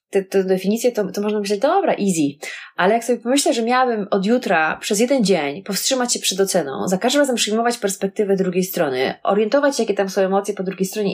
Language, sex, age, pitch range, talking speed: Polish, female, 20-39, 195-250 Hz, 215 wpm